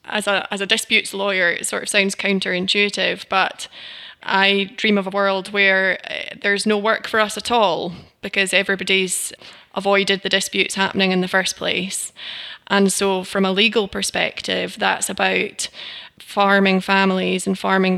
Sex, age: female, 20-39